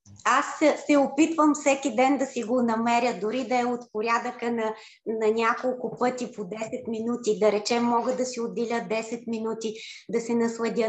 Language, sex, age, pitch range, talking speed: Bulgarian, female, 20-39, 215-255 Hz, 180 wpm